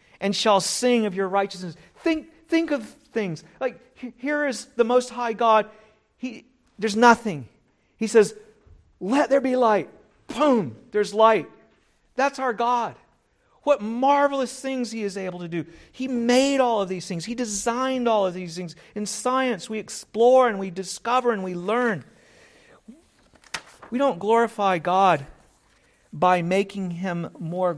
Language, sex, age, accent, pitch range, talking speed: English, male, 50-69, American, 165-230 Hz, 150 wpm